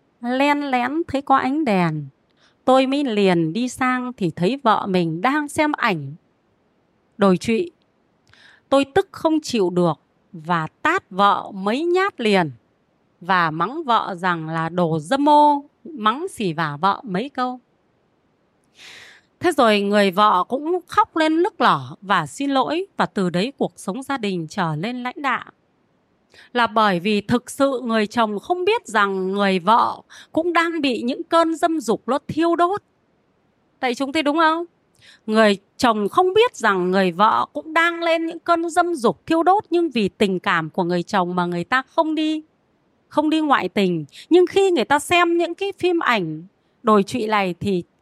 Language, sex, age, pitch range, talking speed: Vietnamese, female, 20-39, 195-315 Hz, 175 wpm